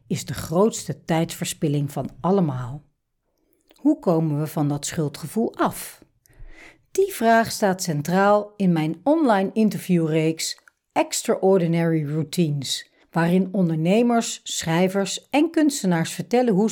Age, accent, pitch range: 60-79, Dutch, 155-210 Hz